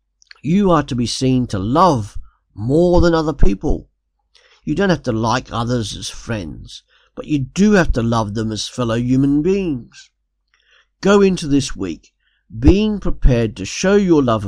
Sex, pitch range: male, 105-140 Hz